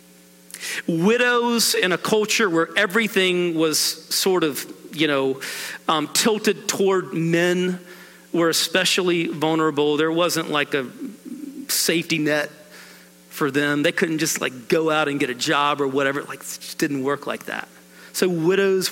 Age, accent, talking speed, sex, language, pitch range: 40-59, American, 150 wpm, male, English, 140-190 Hz